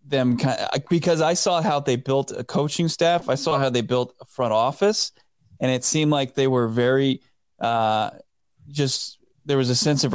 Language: English